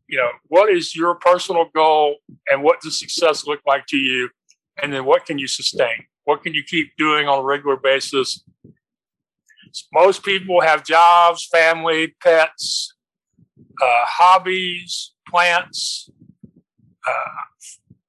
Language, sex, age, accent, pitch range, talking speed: English, male, 50-69, American, 140-175 Hz, 135 wpm